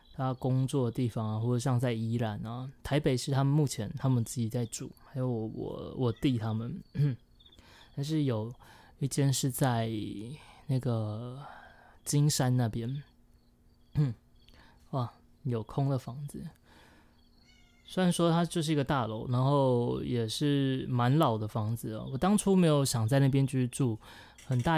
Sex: male